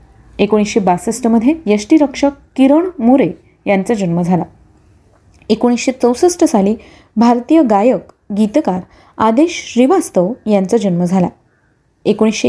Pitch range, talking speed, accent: 195-275 Hz, 95 wpm, native